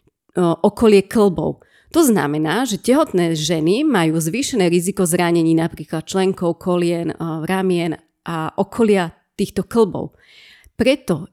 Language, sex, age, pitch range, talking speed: Slovak, female, 30-49, 170-195 Hz, 105 wpm